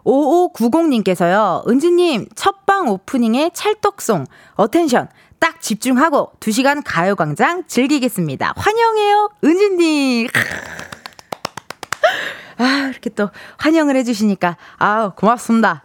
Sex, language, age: female, Korean, 20-39